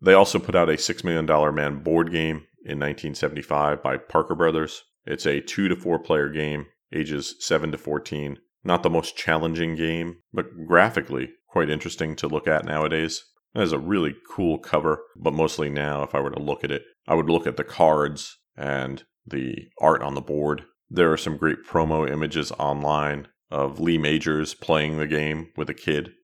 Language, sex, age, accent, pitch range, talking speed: English, male, 40-59, American, 75-80 Hz, 185 wpm